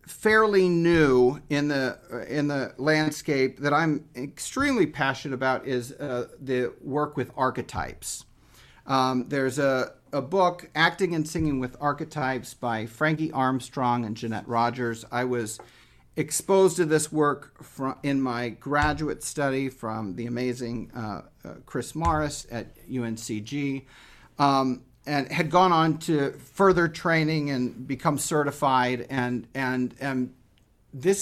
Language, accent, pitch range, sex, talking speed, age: English, American, 125-155 Hz, male, 130 wpm, 40-59